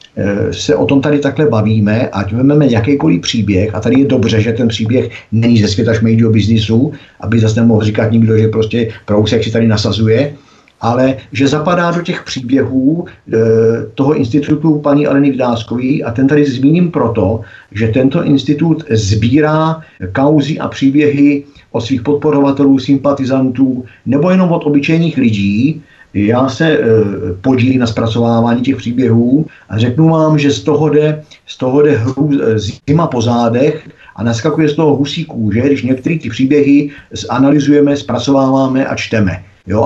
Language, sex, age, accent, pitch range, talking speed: Czech, male, 50-69, native, 110-145 Hz, 155 wpm